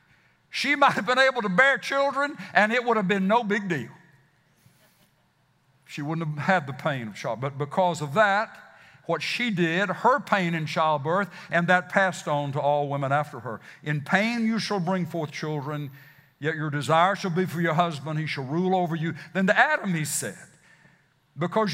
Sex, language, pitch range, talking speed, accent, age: male, English, 160-210 Hz, 195 wpm, American, 60-79